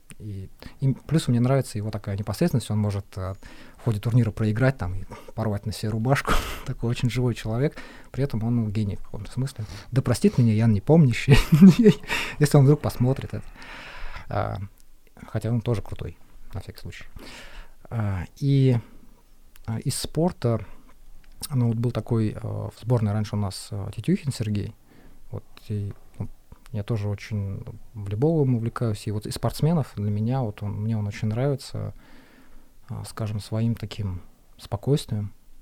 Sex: male